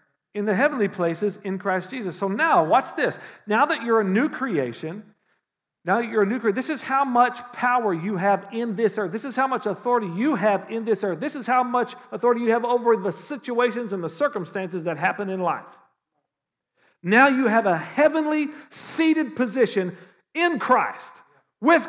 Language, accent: English, American